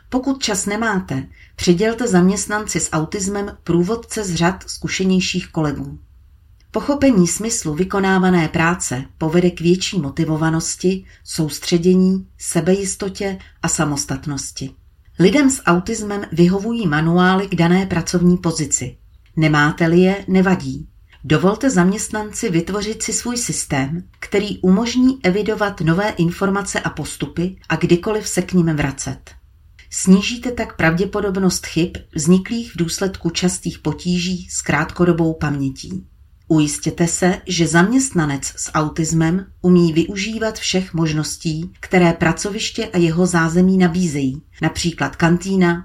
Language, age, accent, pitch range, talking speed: Czech, 40-59, native, 155-190 Hz, 110 wpm